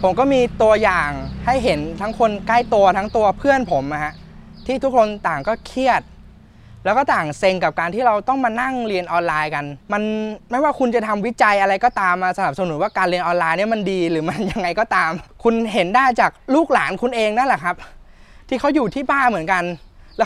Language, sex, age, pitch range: Thai, male, 20-39, 190-250 Hz